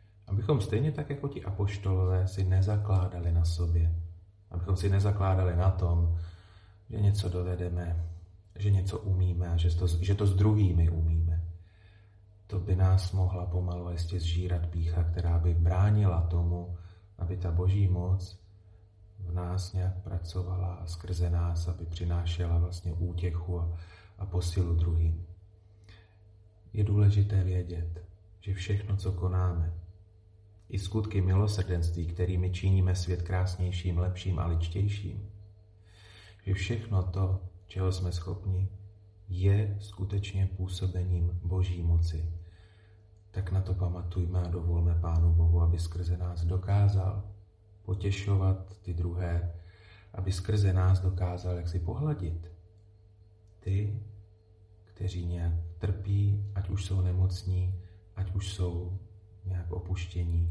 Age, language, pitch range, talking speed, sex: 30-49, Slovak, 90-100 Hz, 120 wpm, male